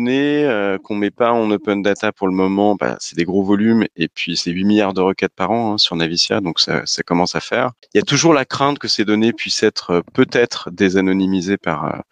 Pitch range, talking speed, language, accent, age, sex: 90-110 Hz, 245 wpm, French, French, 30-49, male